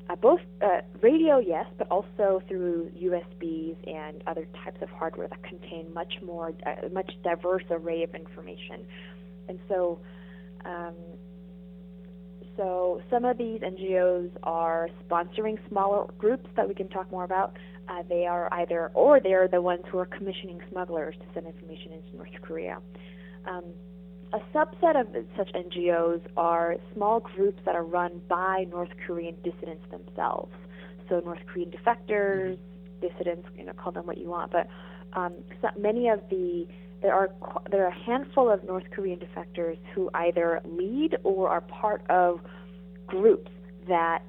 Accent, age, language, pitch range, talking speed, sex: American, 20-39, English, 175-190 Hz, 150 wpm, female